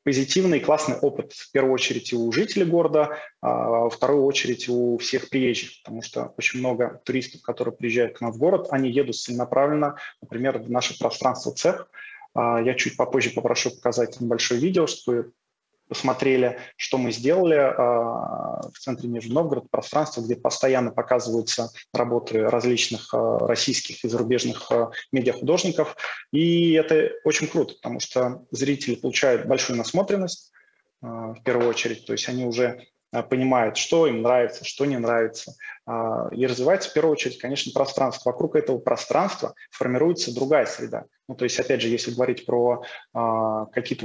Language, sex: Russian, male